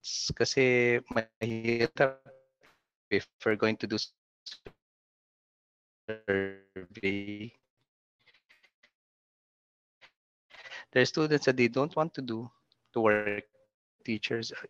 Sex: male